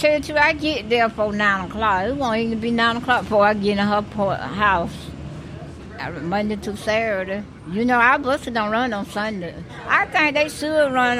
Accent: American